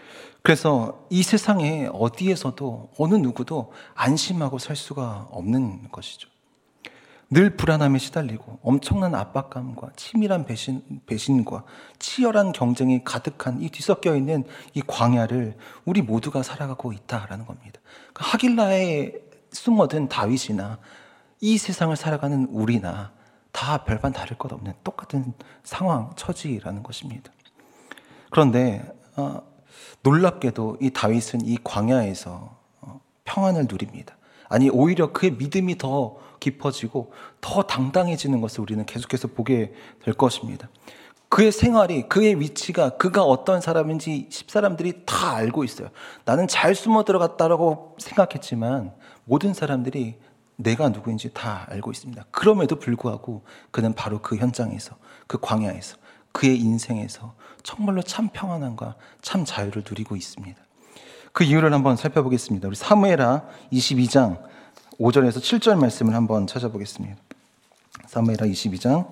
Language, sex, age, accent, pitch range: Korean, male, 40-59, native, 115-160 Hz